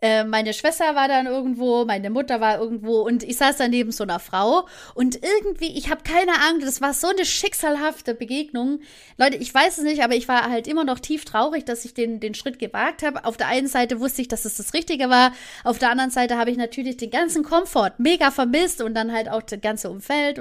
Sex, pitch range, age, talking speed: female, 225-300 Hz, 30-49, 230 wpm